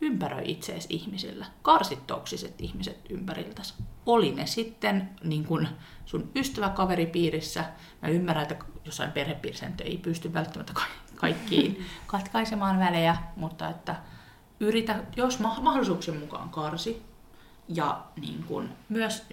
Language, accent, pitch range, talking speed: Finnish, native, 160-205 Hz, 110 wpm